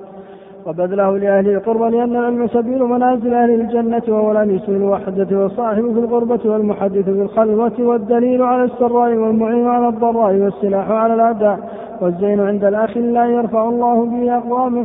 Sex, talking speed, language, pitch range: male, 140 wpm, Arabic, 200-235 Hz